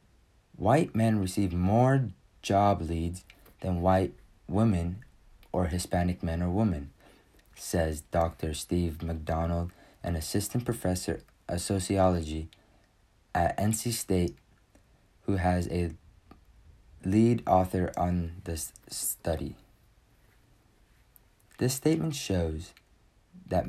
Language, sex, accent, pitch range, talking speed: English, male, American, 90-110 Hz, 95 wpm